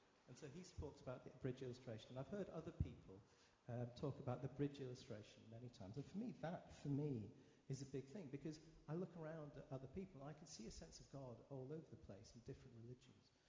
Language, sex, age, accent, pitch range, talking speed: English, male, 40-59, British, 115-150 Hz, 235 wpm